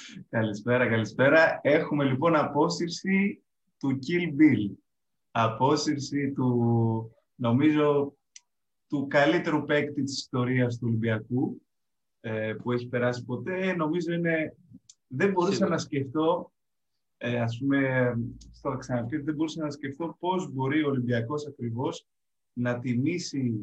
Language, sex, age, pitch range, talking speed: Greek, male, 20-39, 120-150 Hz, 115 wpm